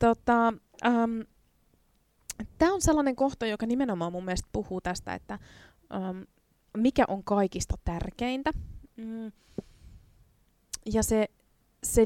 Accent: native